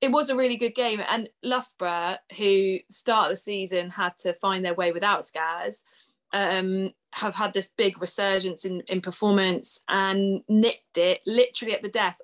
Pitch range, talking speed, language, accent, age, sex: 185-215 Hz, 175 wpm, English, British, 20-39, female